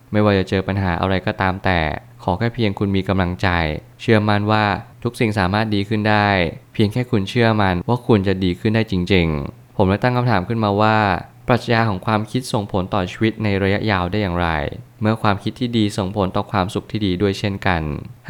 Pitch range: 95-115 Hz